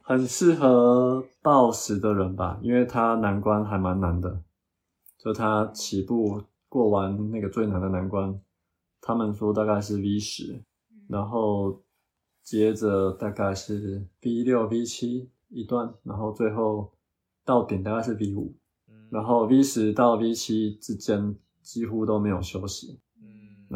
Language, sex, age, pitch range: Chinese, male, 20-39, 100-115 Hz